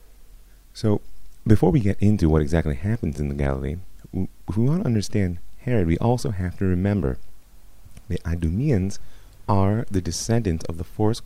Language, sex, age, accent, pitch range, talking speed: English, male, 30-49, American, 80-100 Hz, 165 wpm